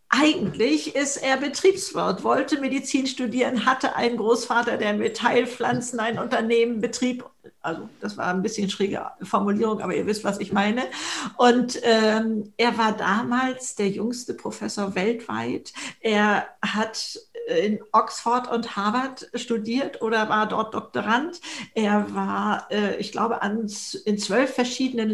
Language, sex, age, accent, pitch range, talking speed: German, female, 50-69, German, 220-265 Hz, 130 wpm